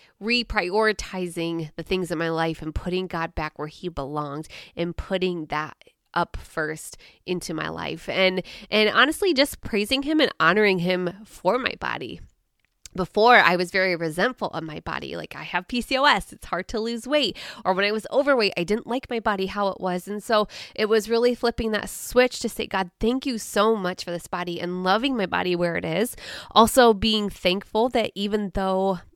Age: 20-39